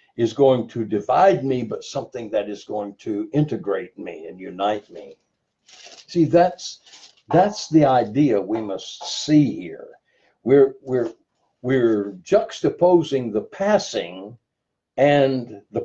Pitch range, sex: 105-150 Hz, male